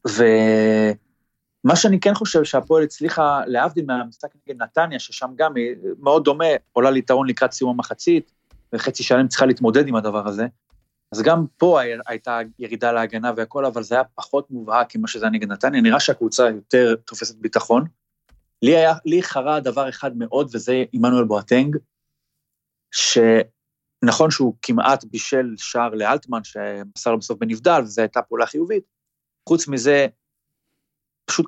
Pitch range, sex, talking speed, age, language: 115-150 Hz, male, 145 wpm, 30-49, Hebrew